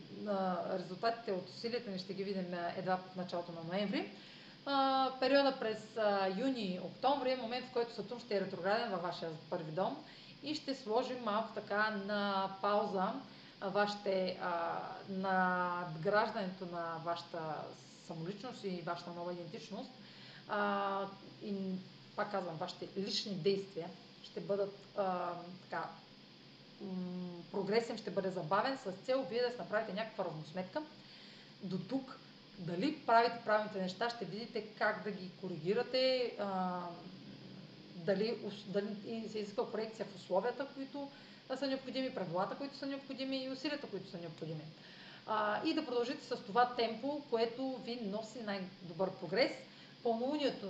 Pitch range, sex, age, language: 185-235 Hz, female, 30-49, Bulgarian